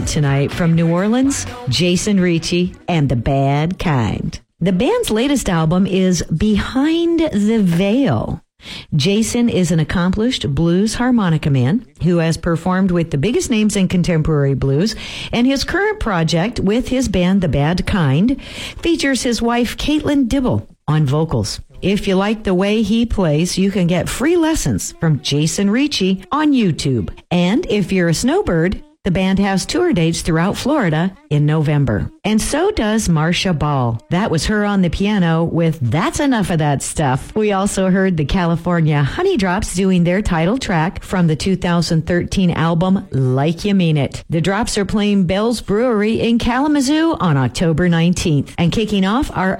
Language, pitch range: Japanese, 160-220 Hz